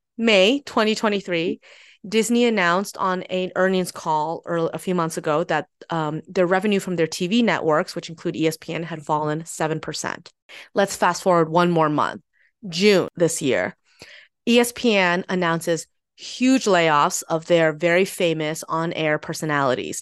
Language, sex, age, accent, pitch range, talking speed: English, female, 30-49, American, 160-190 Hz, 135 wpm